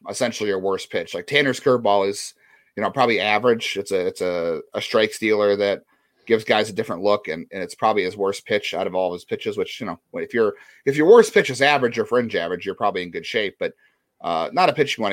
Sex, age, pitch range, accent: male, 30-49, 95-145 Hz, American